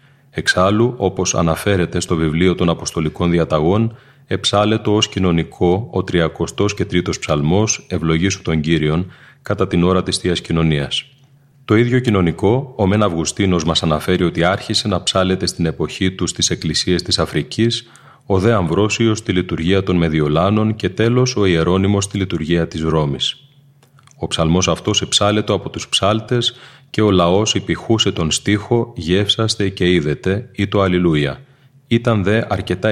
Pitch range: 85-110 Hz